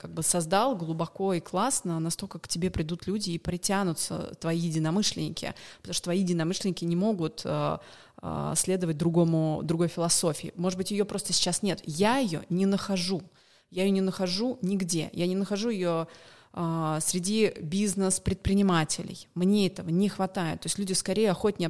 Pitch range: 170-195 Hz